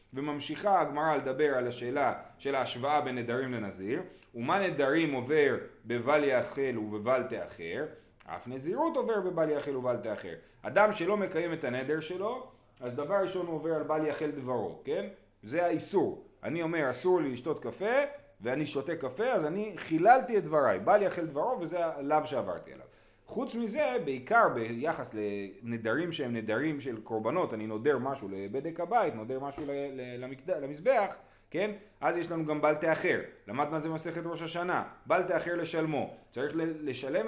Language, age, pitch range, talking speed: Hebrew, 30-49, 125-175 Hz, 160 wpm